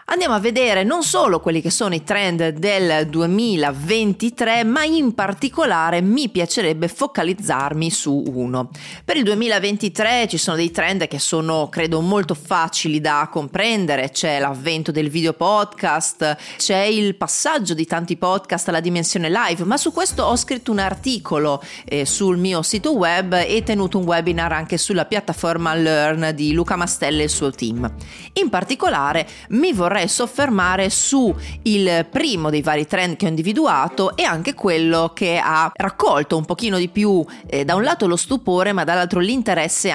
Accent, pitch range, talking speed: native, 160-210 Hz, 160 wpm